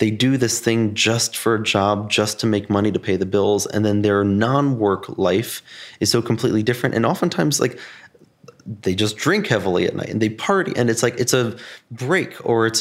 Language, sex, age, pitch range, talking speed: English, male, 30-49, 105-130 Hz, 210 wpm